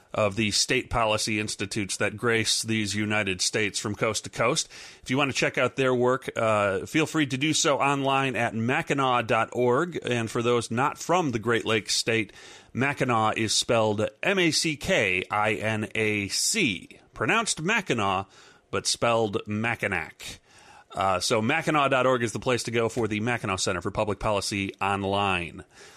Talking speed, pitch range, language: 150 wpm, 105-135 Hz, English